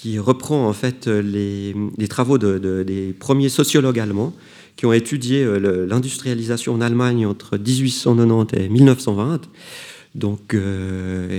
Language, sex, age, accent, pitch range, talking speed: French, male, 40-59, French, 100-130 Hz, 135 wpm